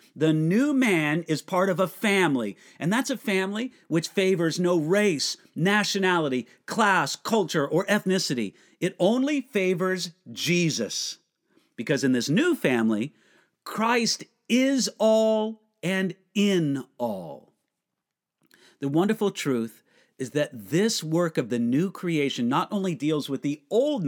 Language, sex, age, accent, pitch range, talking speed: English, male, 50-69, American, 155-220 Hz, 130 wpm